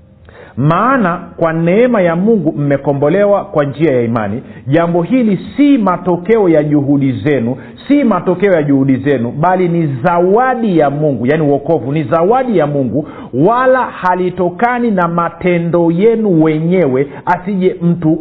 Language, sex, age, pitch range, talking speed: Swahili, male, 50-69, 140-195 Hz, 135 wpm